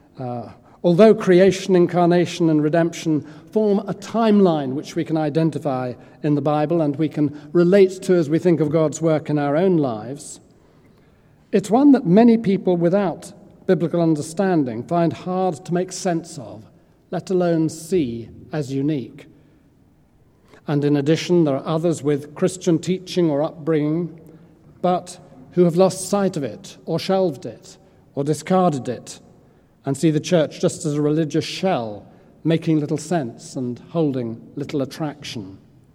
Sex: male